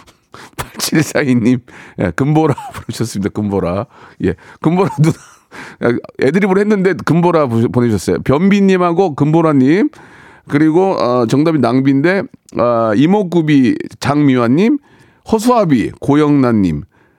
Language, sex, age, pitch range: Korean, male, 40-59, 115-165 Hz